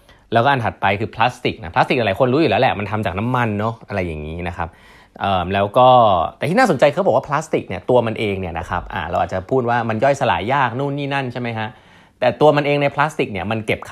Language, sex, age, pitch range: Thai, male, 20-39, 95-135 Hz